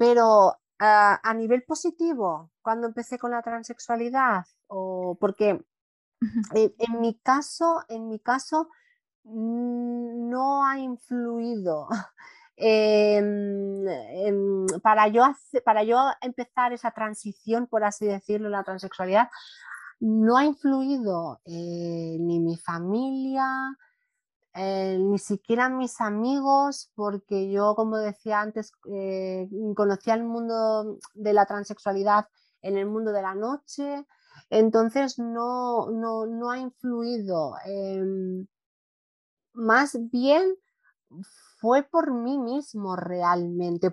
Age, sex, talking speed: 30-49, female, 110 wpm